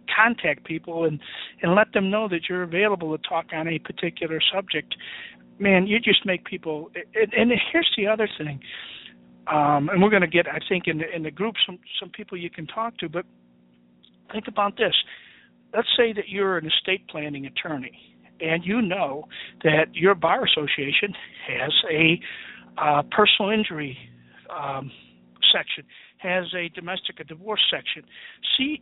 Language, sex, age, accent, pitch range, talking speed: English, male, 50-69, American, 160-215 Hz, 165 wpm